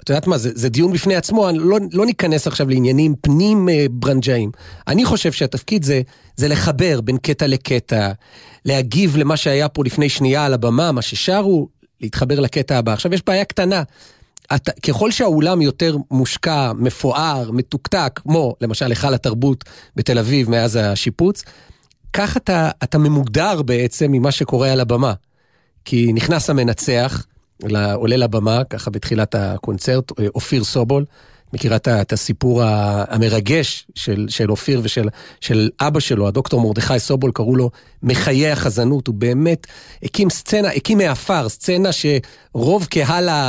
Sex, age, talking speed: male, 40-59, 140 wpm